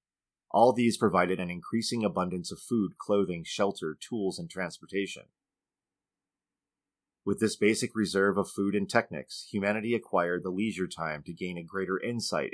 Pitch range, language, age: 90-105 Hz, English, 30-49